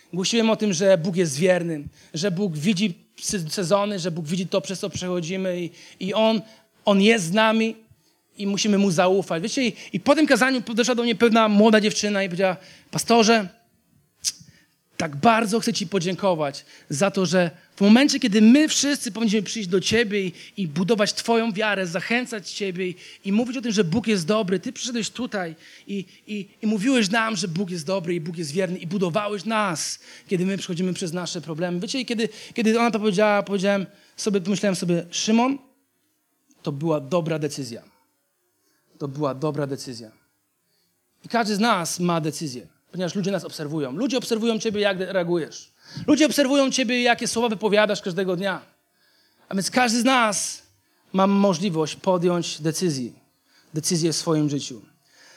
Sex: male